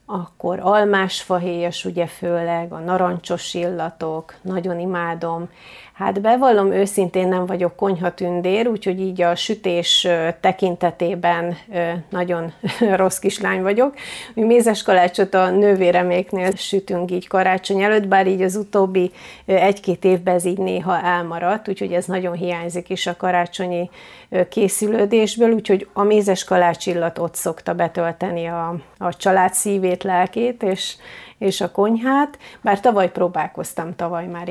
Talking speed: 125 wpm